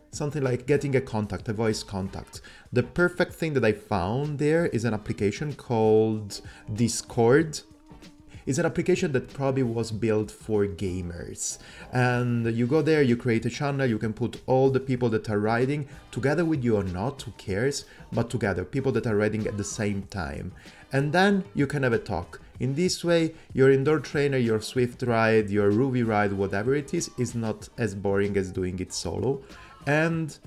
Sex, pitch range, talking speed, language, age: male, 100-130 Hz, 185 wpm, English, 30-49